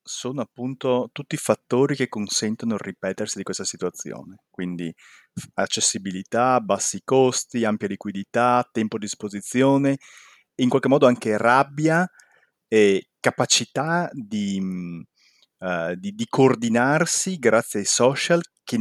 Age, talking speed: 30-49, 115 wpm